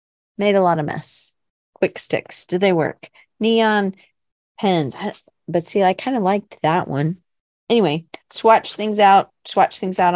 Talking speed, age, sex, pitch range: 160 wpm, 40-59, female, 155-205 Hz